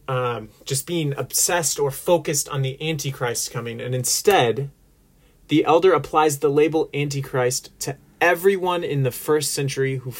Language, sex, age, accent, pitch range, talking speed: English, male, 30-49, American, 125-150 Hz, 145 wpm